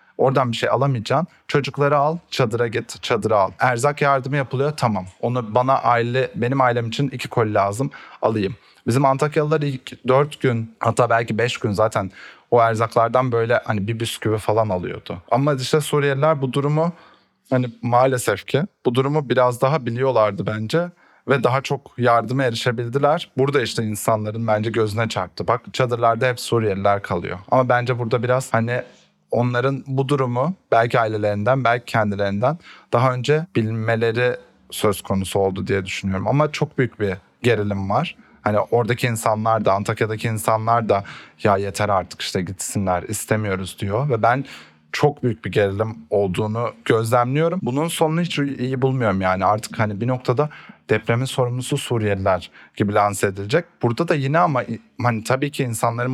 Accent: native